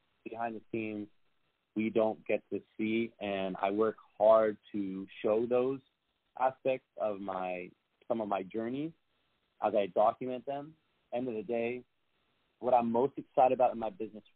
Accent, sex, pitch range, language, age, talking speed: American, male, 95-110 Hz, English, 30-49, 160 wpm